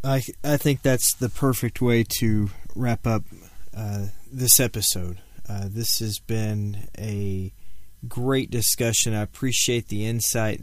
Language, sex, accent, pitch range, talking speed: English, male, American, 100-115 Hz, 135 wpm